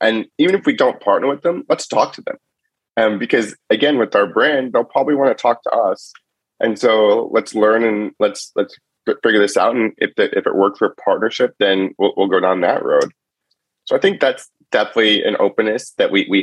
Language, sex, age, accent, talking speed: English, male, 30-49, American, 225 wpm